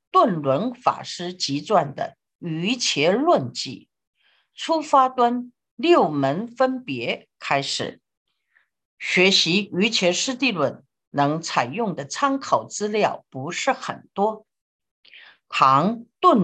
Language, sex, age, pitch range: Chinese, female, 50-69, 155-255 Hz